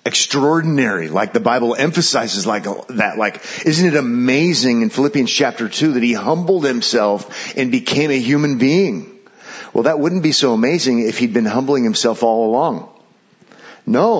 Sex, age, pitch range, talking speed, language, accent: male, 40-59, 110-145 Hz, 160 wpm, English, American